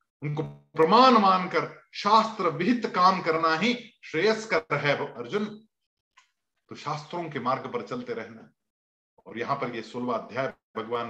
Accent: native